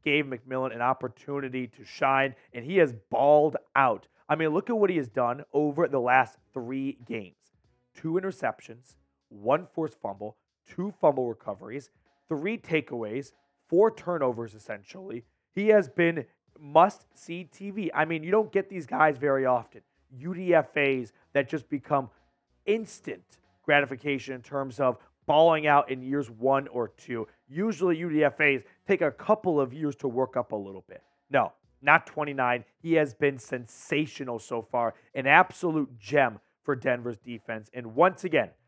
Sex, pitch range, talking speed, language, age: male, 120-155 Hz, 150 wpm, English, 30-49